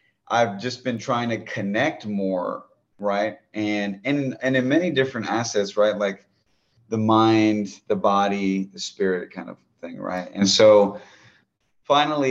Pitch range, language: 95-110 Hz, English